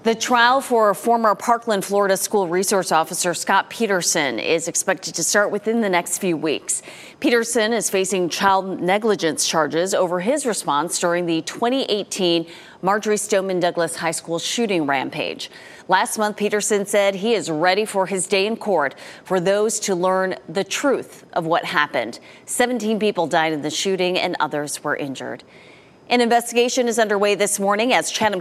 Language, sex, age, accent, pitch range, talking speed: English, female, 30-49, American, 165-210 Hz, 165 wpm